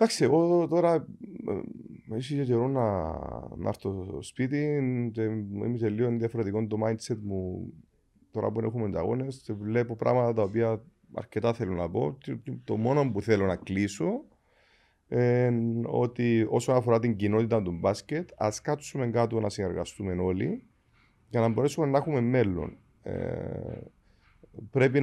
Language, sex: Greek, male